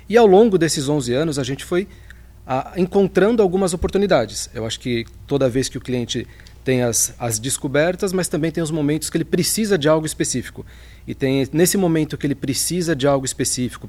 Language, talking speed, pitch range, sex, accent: Portuguese, 200 wpm, 125-165 Hz, male, Brazilian